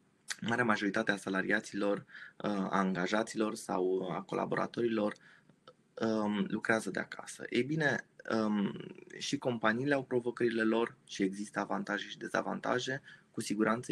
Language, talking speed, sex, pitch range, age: Romanian, 110 wpm, male, 100-115 Hz, 20-39